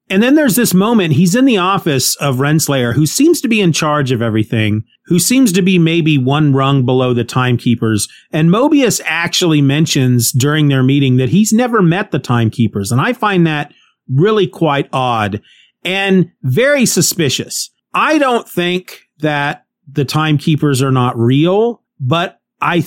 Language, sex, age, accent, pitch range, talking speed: English, male, 40-59, American, 130-170 Hz, 165 wpm